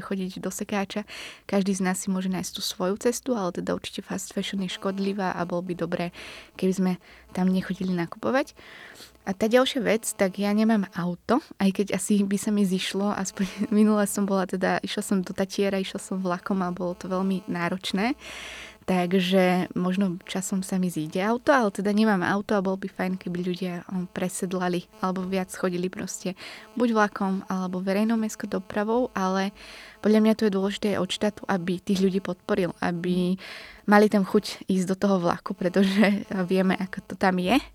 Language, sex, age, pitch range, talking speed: Slovak, female, 20-39, 185-210 Hz, 185 wpm